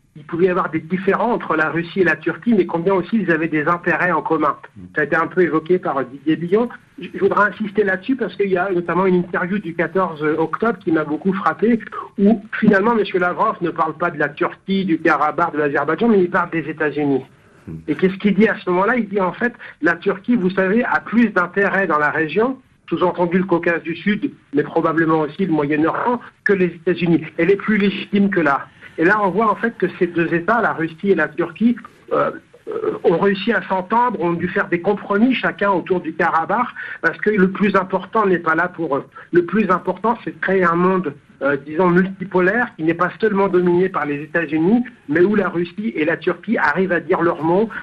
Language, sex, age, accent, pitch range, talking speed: Italian, male, 60-79, French, 165-200 Hz, 220 wpm